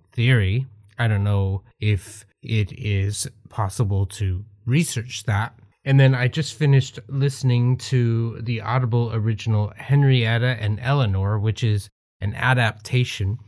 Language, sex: English, male